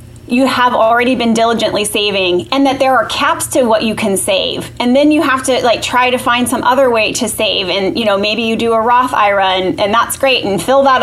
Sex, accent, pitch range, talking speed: female, American, 220-270 Hz, 250 wpm